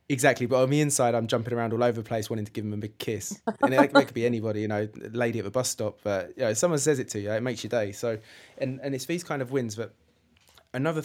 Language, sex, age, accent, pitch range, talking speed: English, male, 20-39, British, 105-125 Hz, 305 wpm